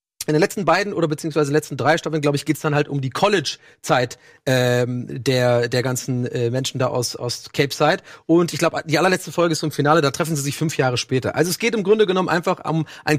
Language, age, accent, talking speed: German, 40-59, German, 255 wpm